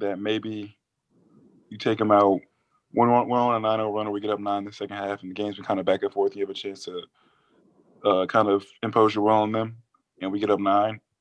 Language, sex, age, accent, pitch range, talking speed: English, male, 20-39, American, 100-105 Hz, 255 wpm